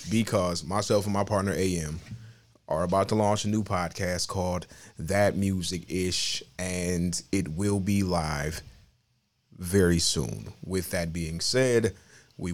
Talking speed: 140 wpm